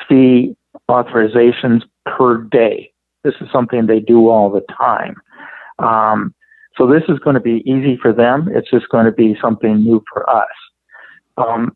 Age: 50-69